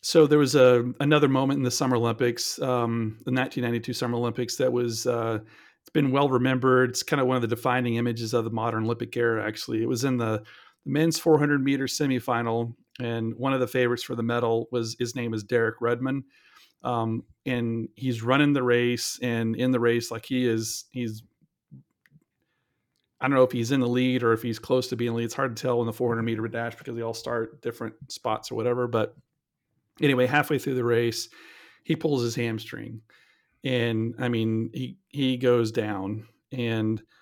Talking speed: 200 wpm